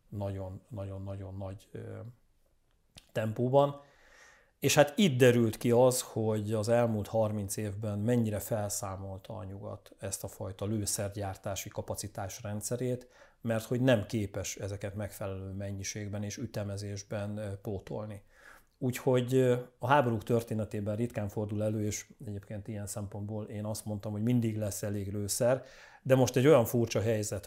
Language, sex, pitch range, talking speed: Hungarian, male, 100-115 Hz, 130 wpm